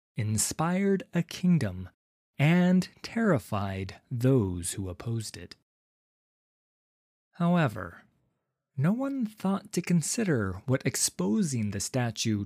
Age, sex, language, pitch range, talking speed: 20-39, male, English, 100-150 Hz, 90 wpm